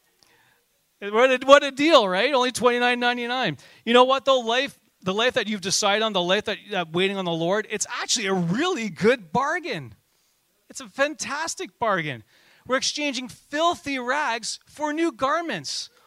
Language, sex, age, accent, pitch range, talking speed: English, male, 40-59, American, 180-260 Hz, 170 wpm